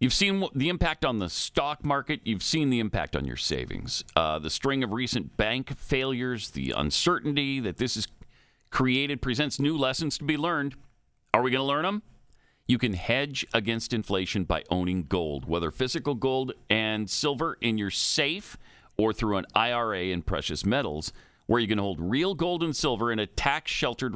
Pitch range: 100-140 Hz